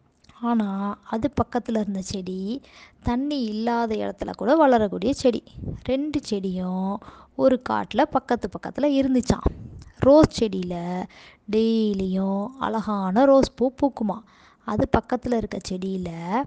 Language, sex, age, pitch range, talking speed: Tamil, female, 20-39, 200-245 Hz, 105 wpm